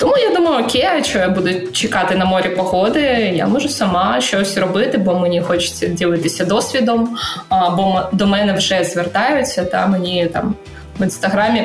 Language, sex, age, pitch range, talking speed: Ukrainian, female, 20-39, 185-220 Hz, 160 wpm